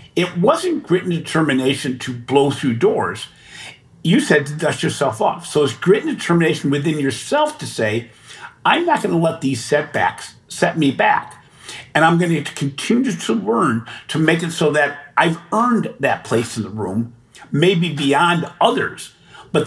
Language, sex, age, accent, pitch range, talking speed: English, male, 50-69, American, 125-165 Hz, 175 wpm